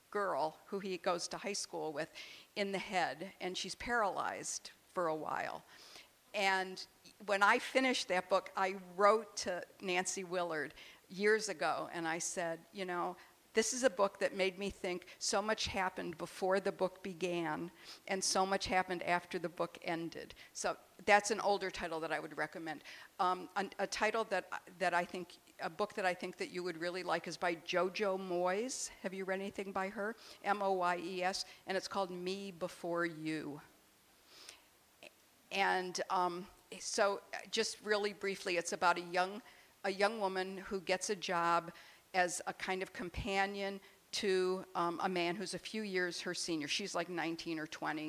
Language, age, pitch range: English, 50-69, 175-200 Hz